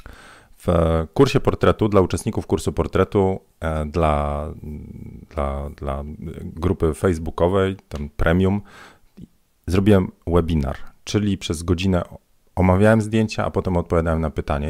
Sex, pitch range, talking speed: male, 80-100 Hz, 105 wpm